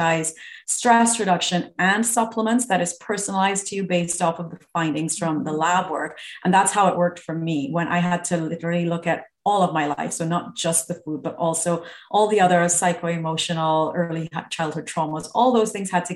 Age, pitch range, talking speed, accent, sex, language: 30-49, 165-195 Hz, 205 wpm, Canadian, female, English